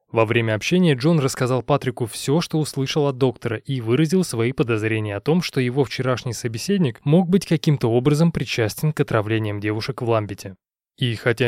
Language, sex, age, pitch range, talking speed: Russian, male, 20-39, 115-150 Hz, 170 wpm